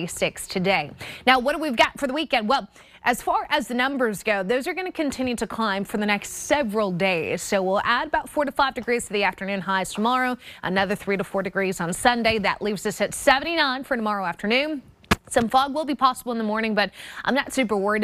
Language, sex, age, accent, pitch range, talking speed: English, female, 20-39, American, 200-255 Hz, 230 wpm